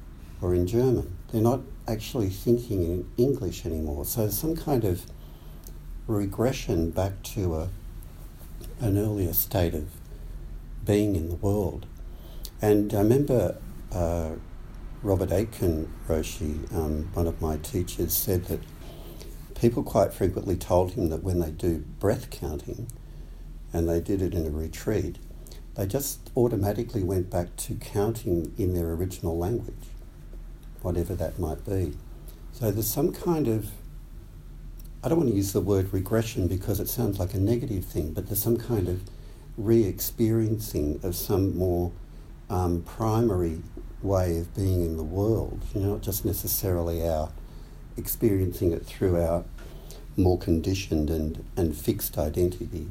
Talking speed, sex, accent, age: 140 wpm, male, Australian, 60-79